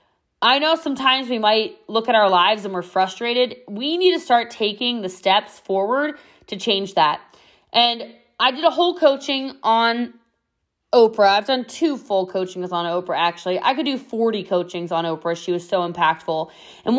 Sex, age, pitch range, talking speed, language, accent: female, 20-39, 190-270 Hz, 180 wpm, English, American